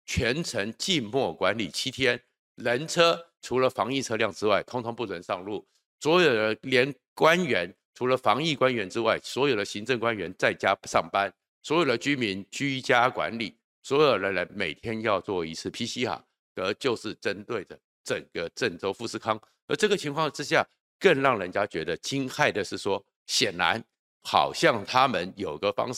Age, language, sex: 50-69, Chinese, male